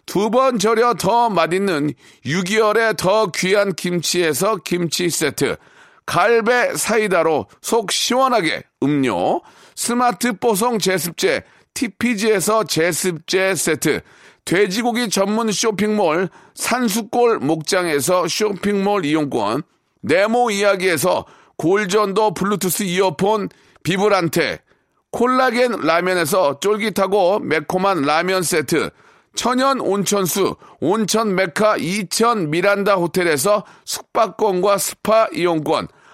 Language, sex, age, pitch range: Korean, male, 40-59, 180-230 Hz